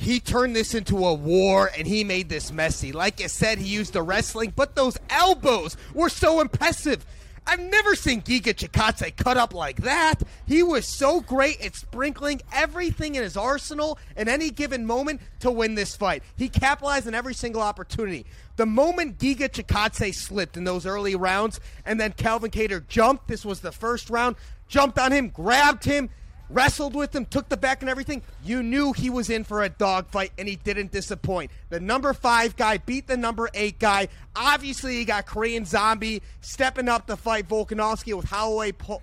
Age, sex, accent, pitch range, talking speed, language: 30-49, male, American, 210-280 Hz, 190 wpm, English